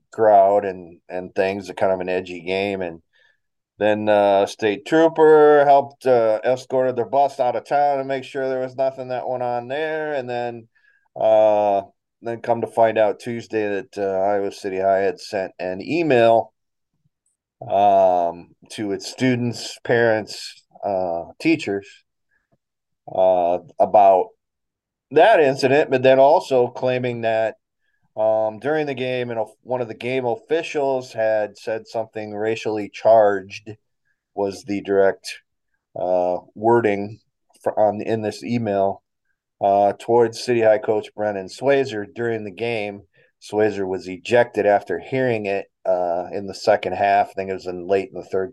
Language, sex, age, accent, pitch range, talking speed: English, male, 30-49, American, 100-130 Hz, 155 wpm